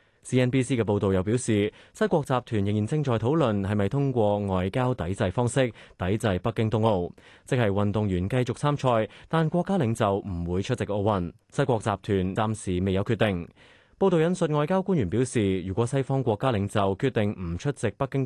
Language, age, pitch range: Chinese, 20-39, 95-135 Hz